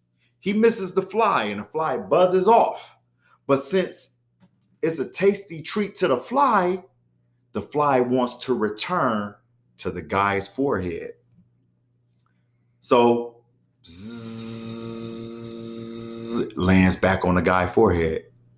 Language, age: English, 30-49